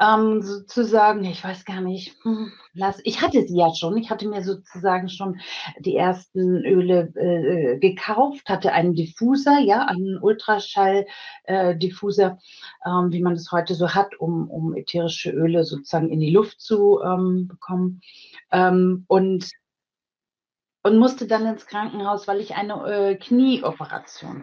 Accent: German